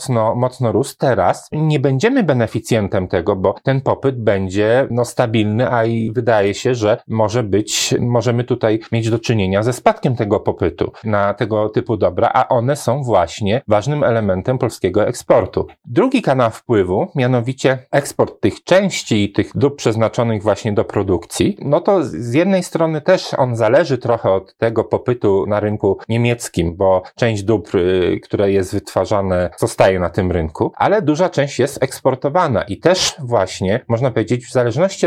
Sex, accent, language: male, native, Polish